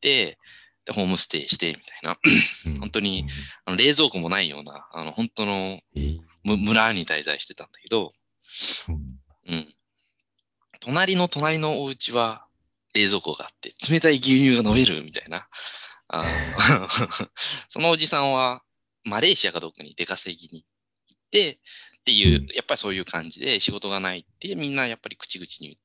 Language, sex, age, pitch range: Japanese, male, 20-39, 85-145 Hz